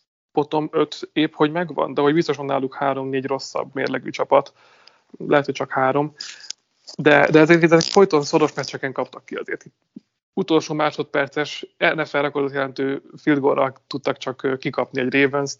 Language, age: Hungarian, 30-49